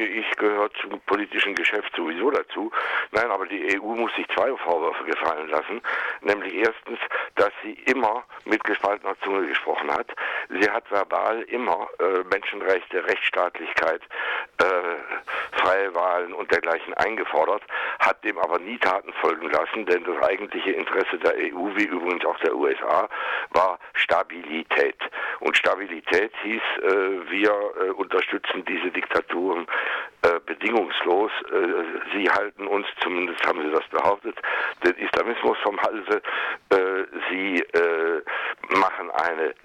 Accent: German